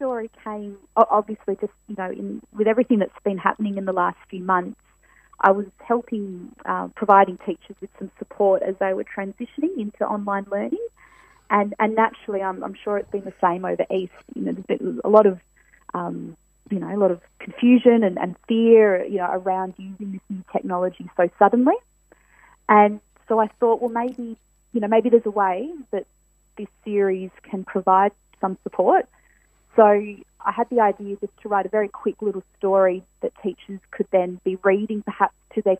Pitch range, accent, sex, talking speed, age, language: 190-225 Hz, Australian, female, 190 wpm, 30-49, English